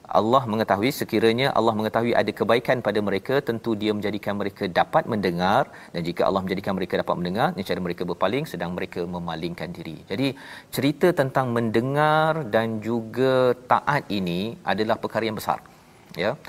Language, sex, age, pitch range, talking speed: Malayalam, male, 40-59, 110-135 Hz, 155 wpm